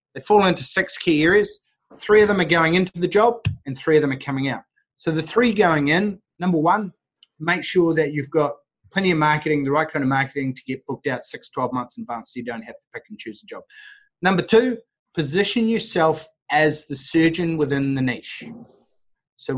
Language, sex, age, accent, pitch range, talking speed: English, male, 30-49, Australian, 135-175 Hz, 220 wpm